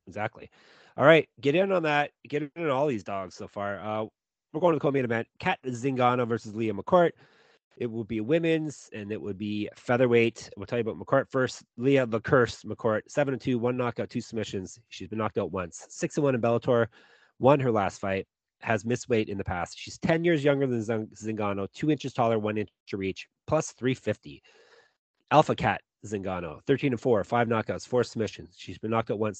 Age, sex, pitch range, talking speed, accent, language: 30-49, male, 110-140 Hz, 210 wpm, American, English